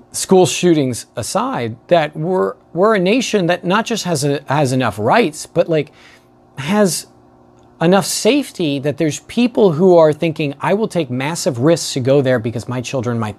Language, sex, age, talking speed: English, male, 40-59, 175 wpm